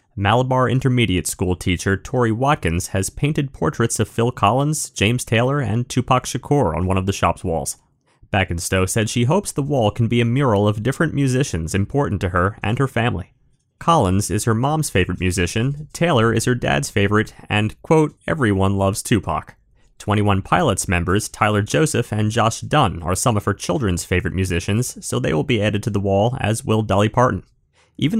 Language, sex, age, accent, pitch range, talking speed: English, male, 30-49, American, 95-130 Hz, 185 wpm